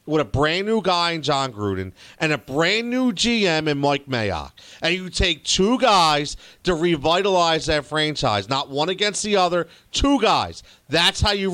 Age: 40-59